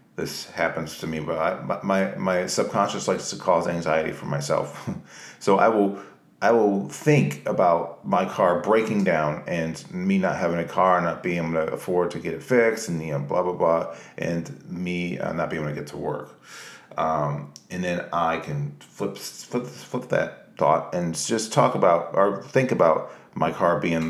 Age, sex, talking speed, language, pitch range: 40-59, male, 190 wpm, English, 80-95 Hz